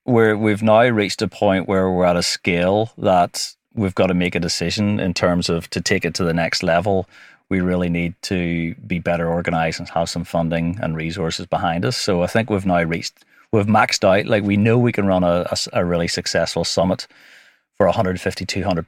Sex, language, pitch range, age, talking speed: male, English, 85-100 Hz, 30-49, 205 wpm